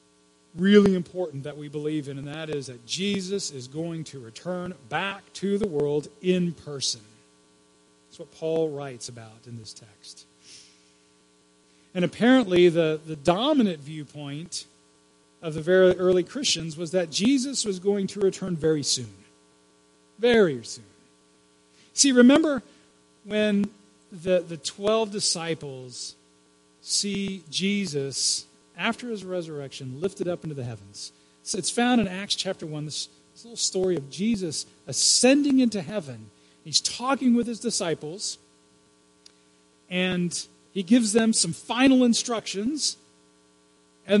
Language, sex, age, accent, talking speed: English, male, 40-59, American, 130 wpm